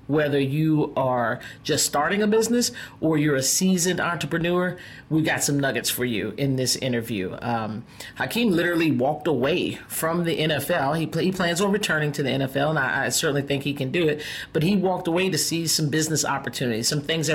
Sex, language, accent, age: male, English, American, 40-59